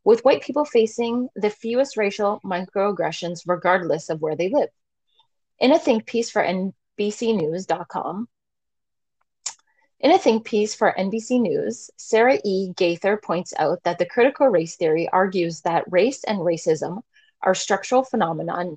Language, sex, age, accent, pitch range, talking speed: English, female, 30-49, American, 170-225 Hz, 140 wpm